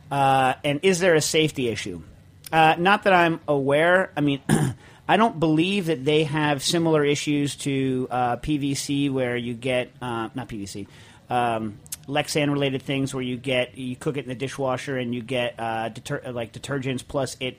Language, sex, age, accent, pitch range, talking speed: English, male, 40-59, American, 125-150 Hz, 180 wpm